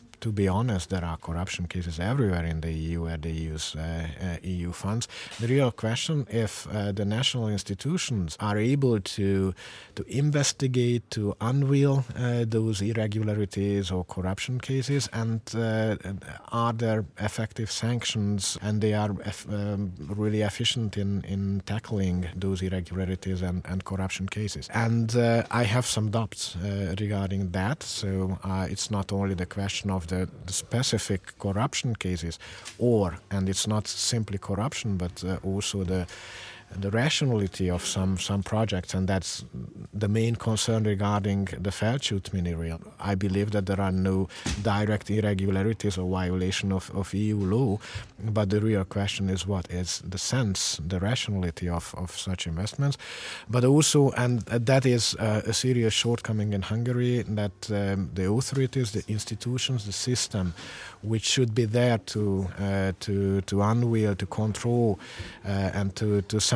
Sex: male